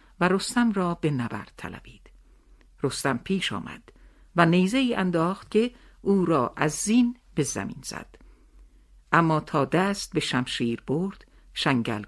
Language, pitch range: Persian, 135-190 Hz